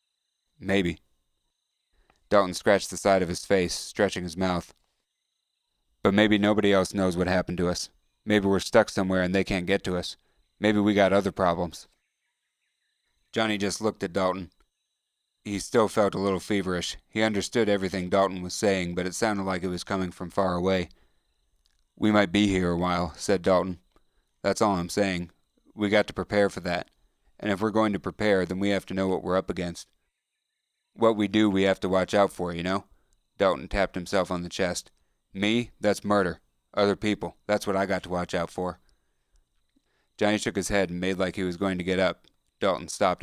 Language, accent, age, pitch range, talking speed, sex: English, American, 30-49, 90-100 Hz, 195 wpm, male